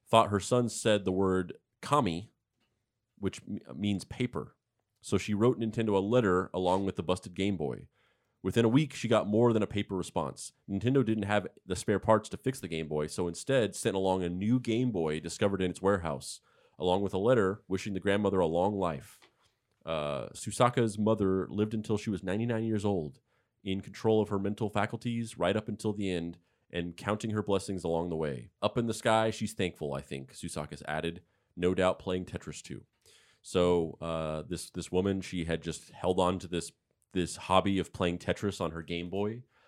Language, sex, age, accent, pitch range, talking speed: English, male, 30-49, American, 85-105 Hz, 195 wpm